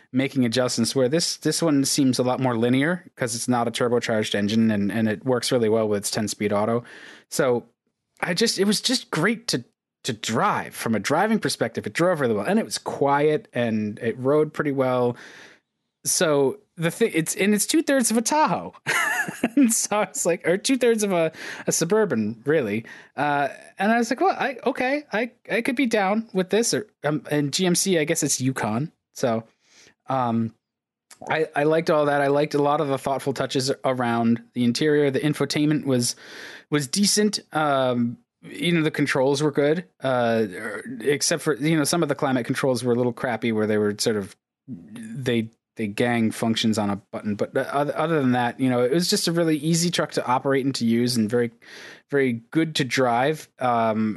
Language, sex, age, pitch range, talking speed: English, male, 20-39, 120-170 Hz, 200 wpm